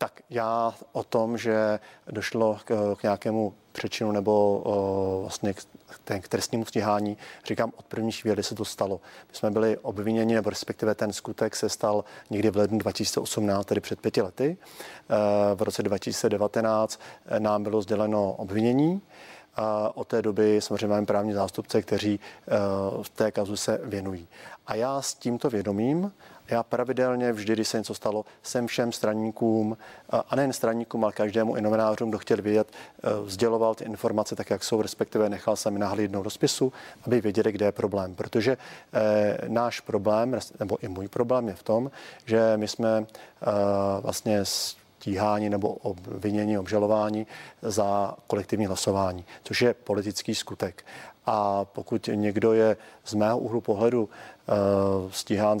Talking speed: 150 wpm